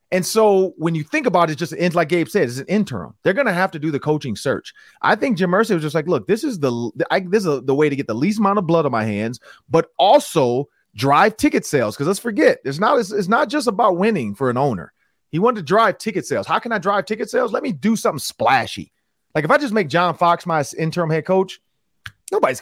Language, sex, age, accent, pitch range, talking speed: English, male, 30-49, American, 165-230 Hz, 255 wpm